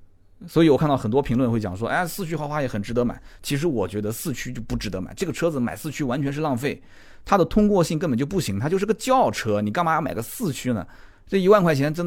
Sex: male